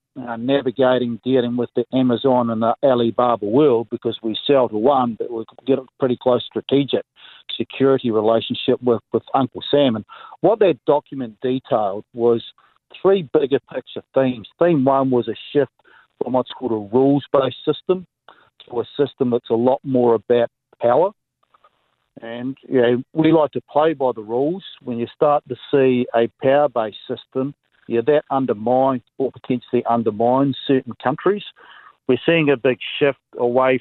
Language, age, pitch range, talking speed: English, 50-69, 120-140 Hz, 155 wpm